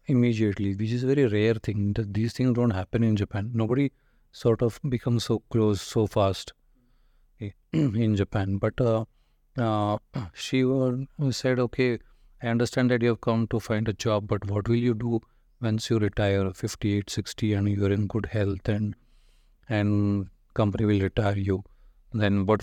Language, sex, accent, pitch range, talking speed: Hindi, male, native, 100-120 Hz, 165 wpm